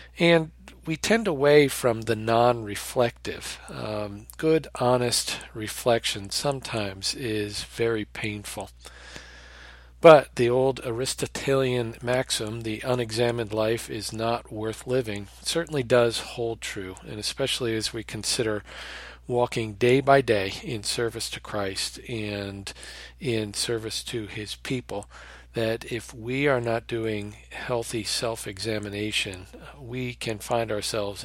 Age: 40-59